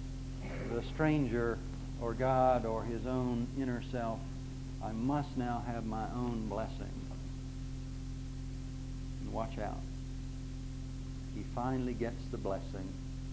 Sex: male